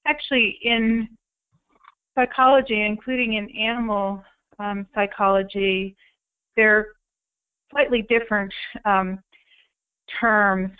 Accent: American